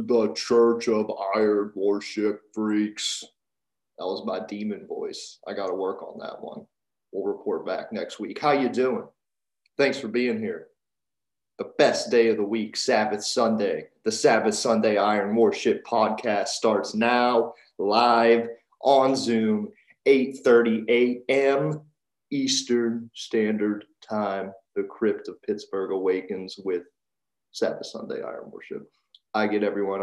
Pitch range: 100-130 Hz